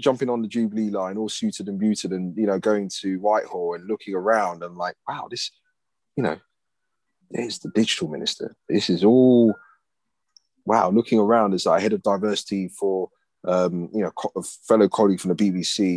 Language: English